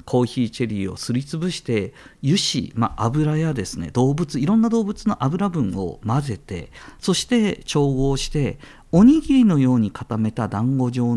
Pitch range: 110-180 Hz